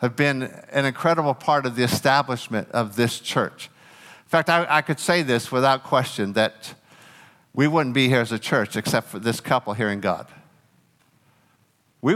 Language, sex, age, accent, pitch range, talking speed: English, male, 50-69, American, 115-145 Hz, 180 wpm